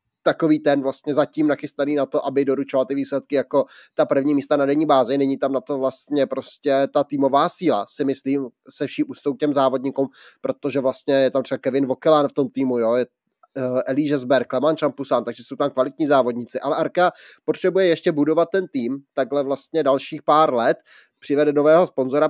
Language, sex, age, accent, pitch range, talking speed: Czech, male, 20-39, native, 135-155 Hz, 185 wpm